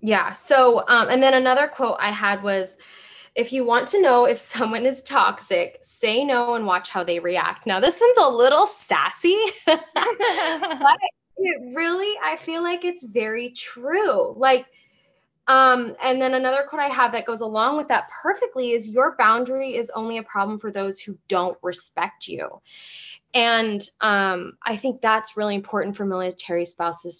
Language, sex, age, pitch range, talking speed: English, female, 10-29, 190-260 Hz, 170 wpm